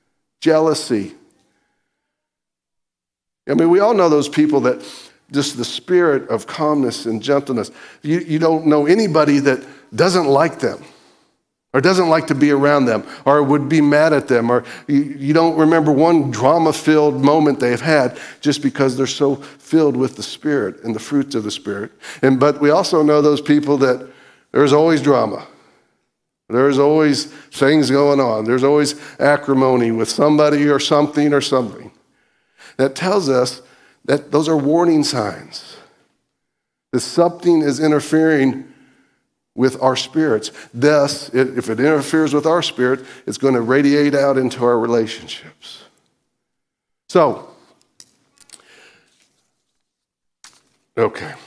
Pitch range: 130-155 Hz